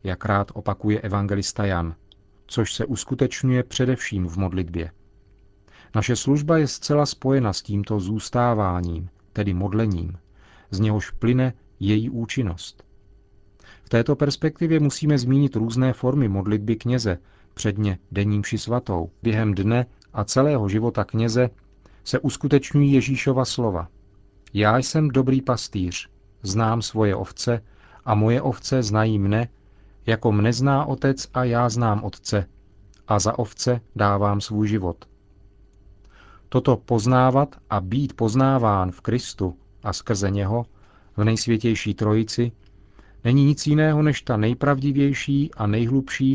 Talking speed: 120 wpm